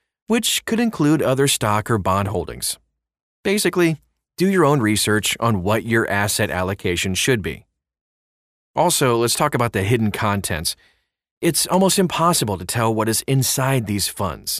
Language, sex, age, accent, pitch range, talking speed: English, male, 30-49, American, 105-145 Hz, 150 wpm